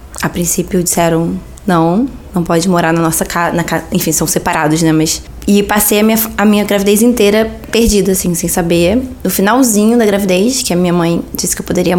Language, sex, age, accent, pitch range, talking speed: Portuguese, female, 20-39, Brazilian, 170-210 Hz, 190 wpm